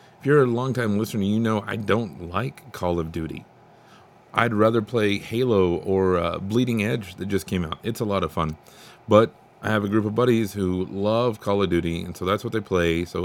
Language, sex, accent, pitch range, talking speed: English, male, American, 90-115 Hz, 215 wpm